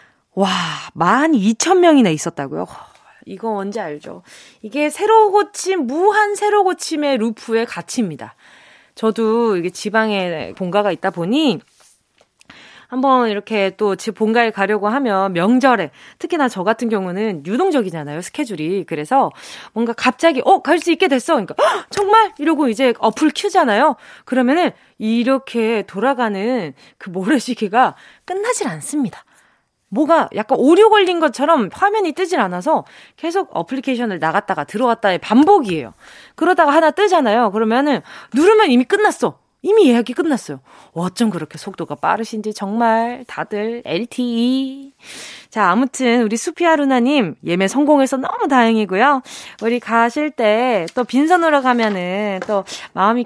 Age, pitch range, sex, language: 20-39, 205-300 Hz, female, Korean